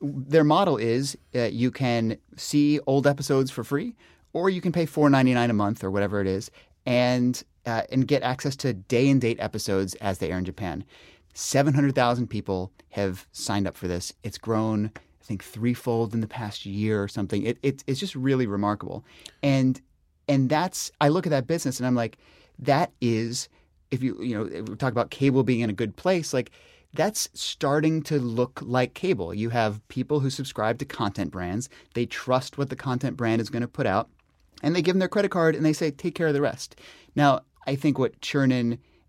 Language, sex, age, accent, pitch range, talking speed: English, male, 30-49, American, 105-140 Hz, 210 wpm